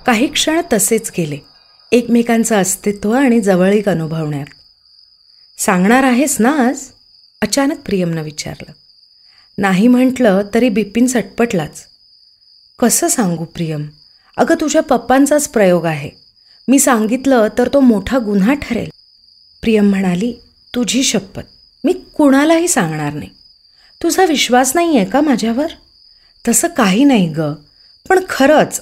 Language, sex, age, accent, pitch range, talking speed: Marathi, female, 30-49, native, 180-265 Hz, 115 wpm